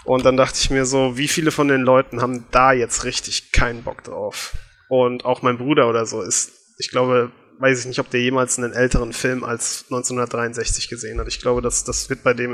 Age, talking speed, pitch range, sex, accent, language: 20-39, 225 wpm, 125-140 Hz, male, German, German